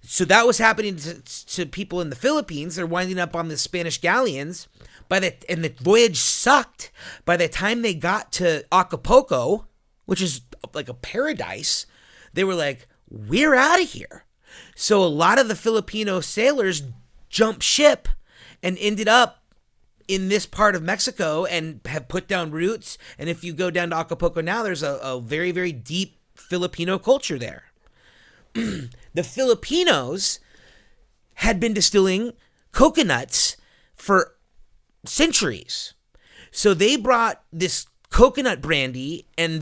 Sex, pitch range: male, 160-215 Hz